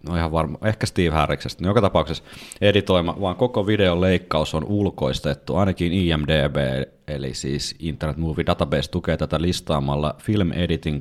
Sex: male